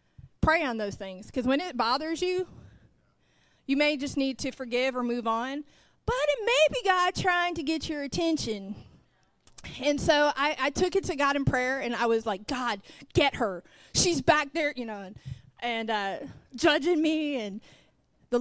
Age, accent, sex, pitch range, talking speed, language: 30-49, American, female, 205-255 Hz, 185 wpm, English